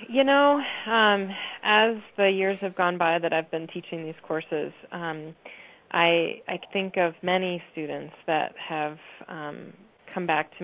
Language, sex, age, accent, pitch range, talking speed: English, female, 20-39, American, 160-180 Hz, 160 wpm